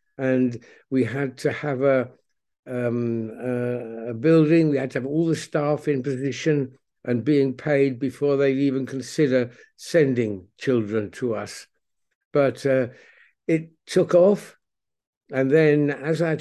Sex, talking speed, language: male, 145 wpm, English